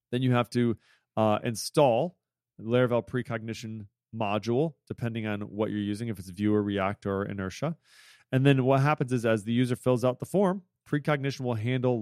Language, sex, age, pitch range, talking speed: English, male, 30-49, 105-125 Hz, 180 wpm